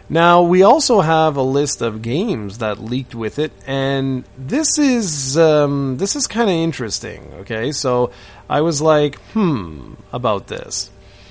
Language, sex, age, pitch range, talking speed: English, male, 30-49, 120-175 Hz, 155 wpm